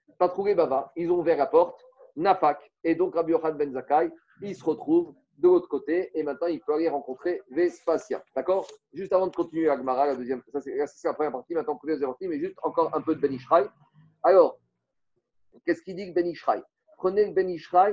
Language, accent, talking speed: French, French, 210 wpm